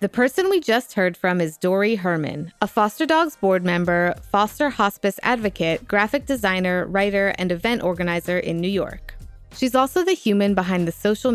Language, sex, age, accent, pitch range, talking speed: English, female, 20-39, American, 175-245 Hz, 175 wpm